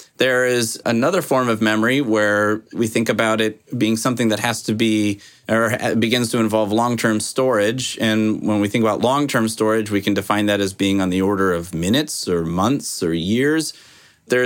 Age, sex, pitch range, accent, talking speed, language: 30-49, male, 100-115 Hz, American, 190 wpm, English